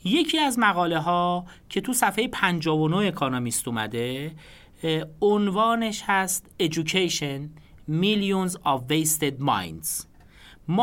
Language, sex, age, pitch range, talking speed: Persian, male, 40-59, 125-195 Hz, 100 wpm